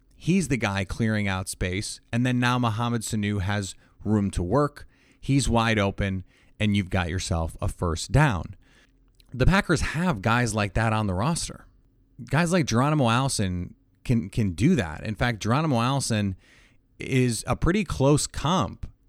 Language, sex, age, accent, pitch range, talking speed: English, male, 30-49, American, 100-135 Hz, 160 wpm